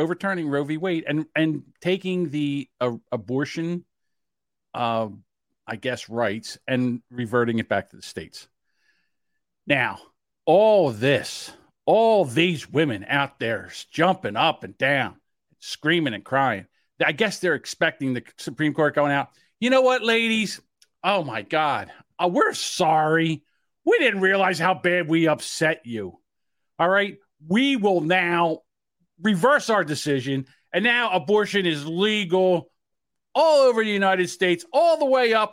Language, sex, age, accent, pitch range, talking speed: English, male, 50-69, American, 145-220 Hz, 140 wpm